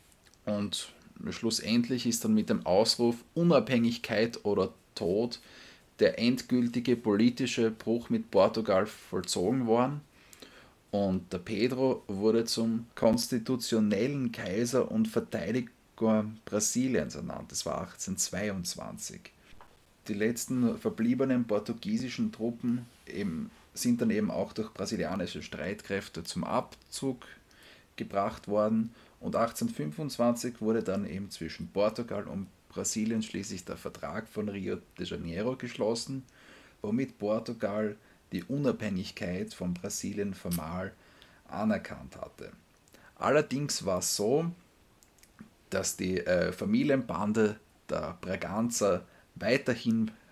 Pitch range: 105-125 Hz